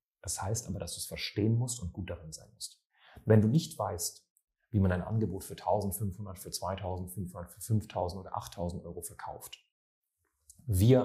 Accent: German